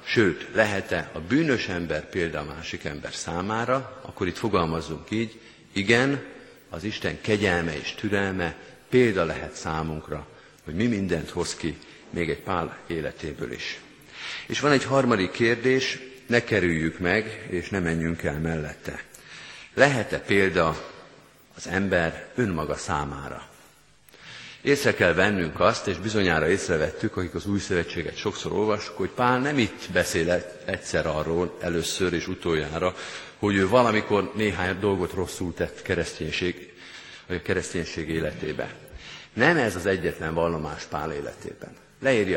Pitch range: 80-110 Hz